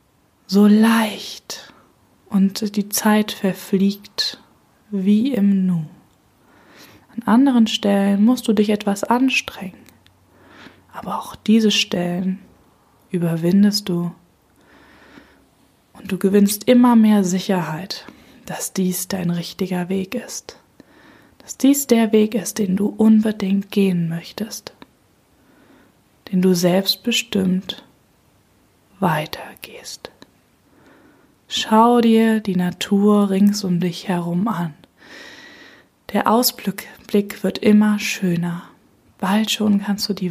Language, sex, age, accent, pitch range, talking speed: German, female, 20-39, German, 185-215 Hz, 100 wpm